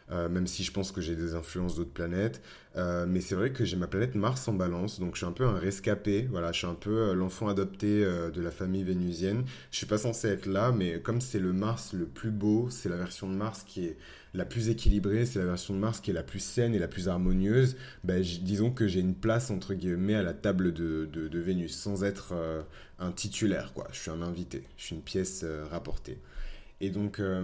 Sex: male